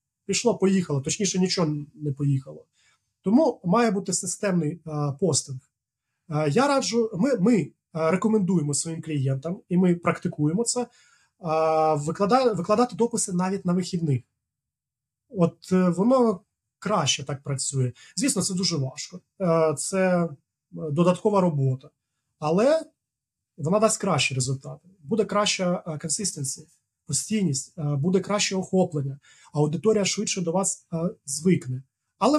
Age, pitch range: 30-49, 145-195 Hz